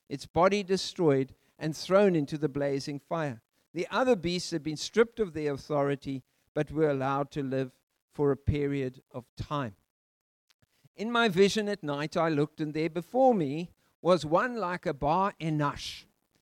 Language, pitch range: English, 140-200 Hz